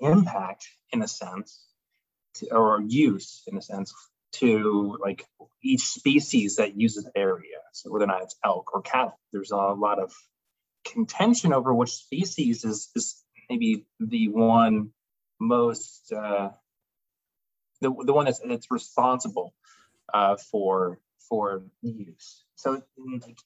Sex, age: male, 20-39